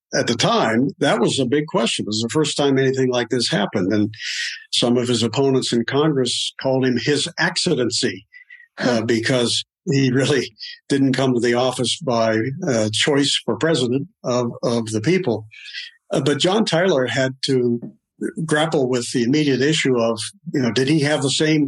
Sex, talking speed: male, 180 wpm